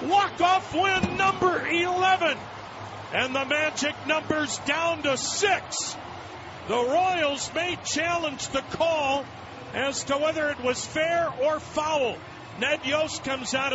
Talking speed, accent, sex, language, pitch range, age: 125 wpm, American, male, English, 250-320 Hz, 50-69